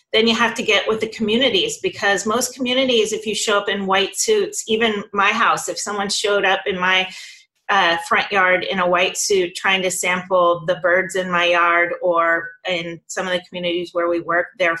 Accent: American